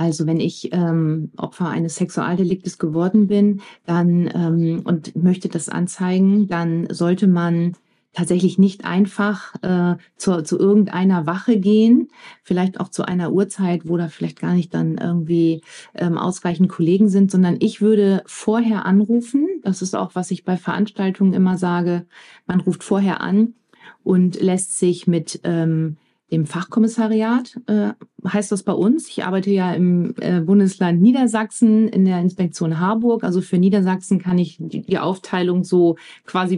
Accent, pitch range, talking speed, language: German, 175-200 Hz, 155 wpm, German